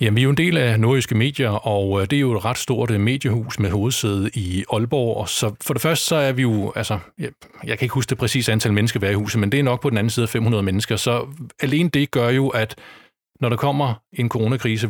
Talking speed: 260 wpm